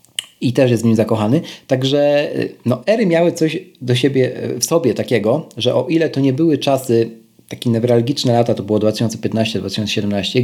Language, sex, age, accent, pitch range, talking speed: Polish, male, 40-59, native, 110-130 Hz, 165 wpm